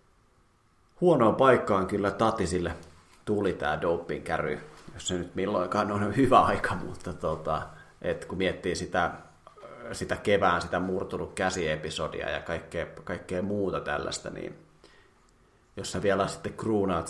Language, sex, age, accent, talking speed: Finnish, male, 30-49, native, 125 wpm